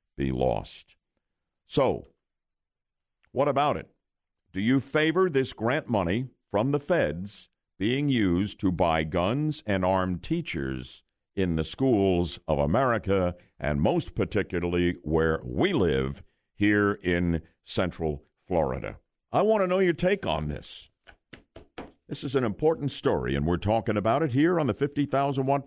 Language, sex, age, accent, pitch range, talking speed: English, male, 60-79, American, 95-145 Hz, 140 wpm